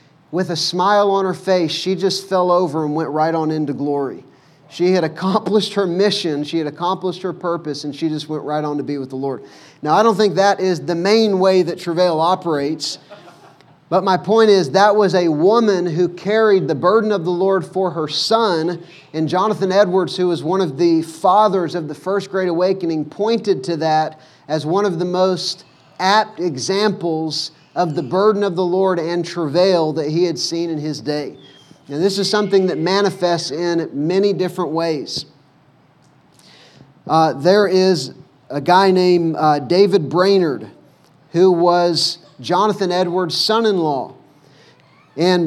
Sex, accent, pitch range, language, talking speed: male, American, 160-190 Hz, English, 175 wpm